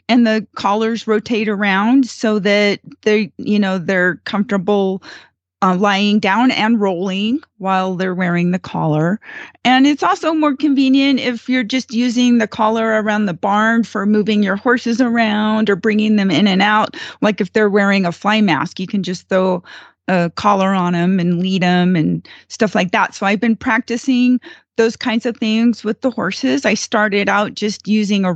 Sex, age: female, 30-49